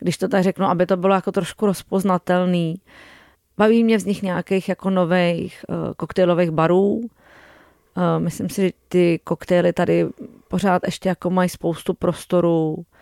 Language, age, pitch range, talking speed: Czech, 30-49, 170-190 Hz, 140 wpm